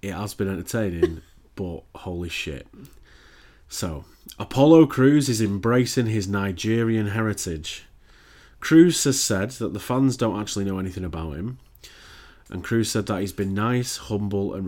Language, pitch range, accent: English, 85-110 Hz, British